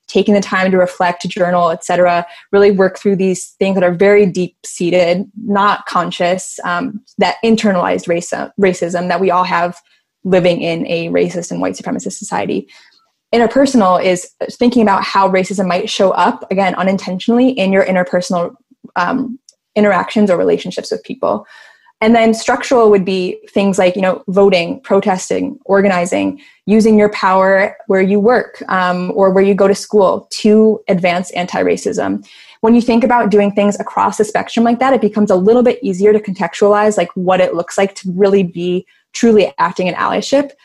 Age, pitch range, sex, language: 20-39, 185-220 Hz, female, English